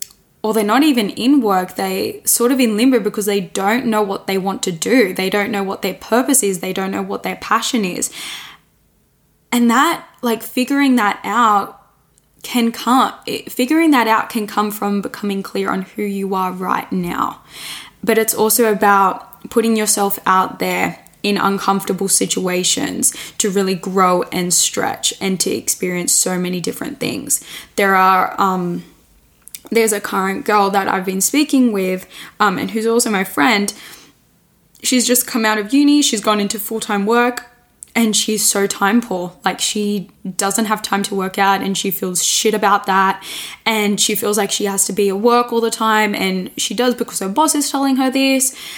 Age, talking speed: 10-29, 185 wpm